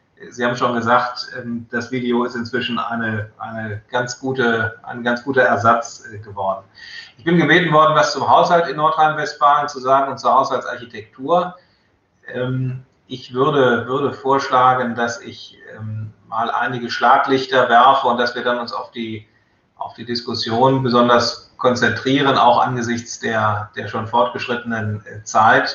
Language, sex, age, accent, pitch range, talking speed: German, male, 30-49, German, 115-130 Hz, 140 wpm